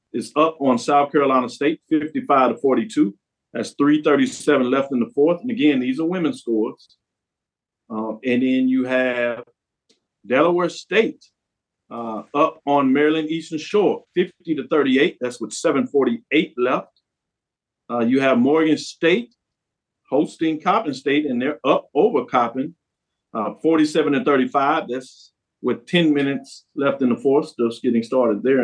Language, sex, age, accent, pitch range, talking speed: English, male, 50-69, American, 125-165 Hz, 145 wpm